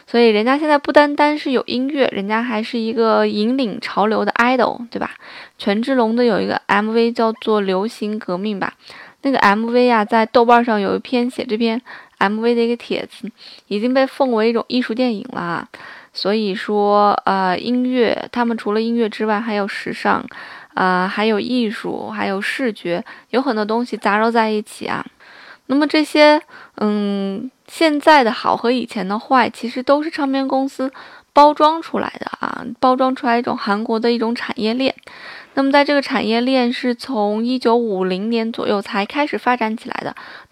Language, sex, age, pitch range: Chinese, female, 20-39, 215-260 Hz